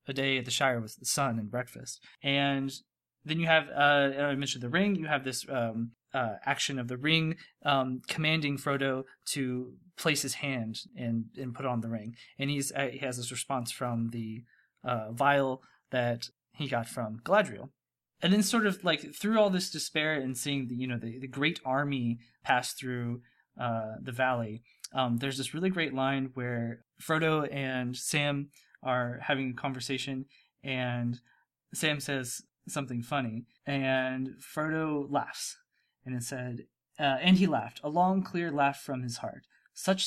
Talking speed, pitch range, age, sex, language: 175 wpm, 125-145 Hz, 20-39, male, English